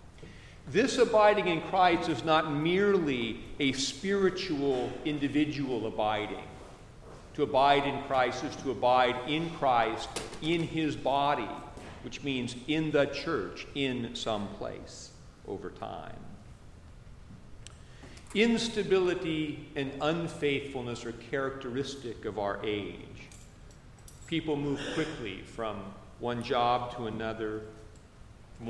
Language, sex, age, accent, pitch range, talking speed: English, male, 50-69, American, 115-155 Hz, 105 wpm